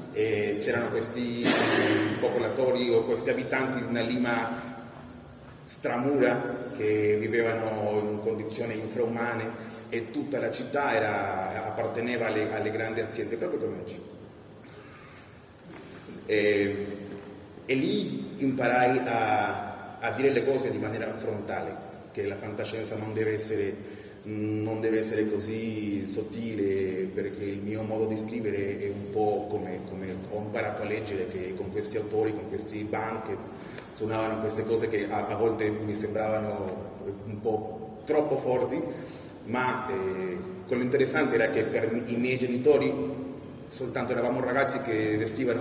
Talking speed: 135 wpm